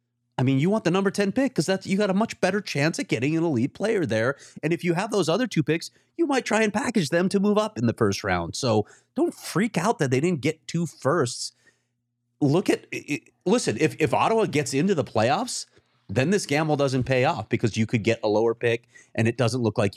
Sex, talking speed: male, 245 wpm